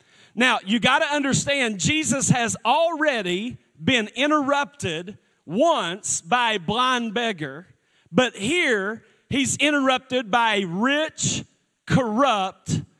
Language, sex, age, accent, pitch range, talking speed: English, male, 40-59, American, 215-285 Hz, 105 wpm